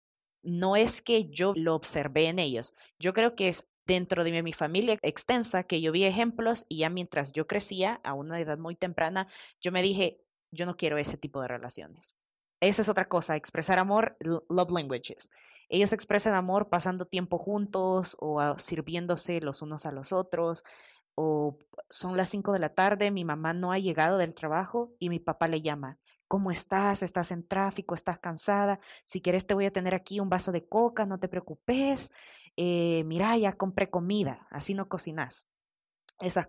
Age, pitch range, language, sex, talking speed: 20-39, 160-195 Hz, Spanish, female, 185 wpm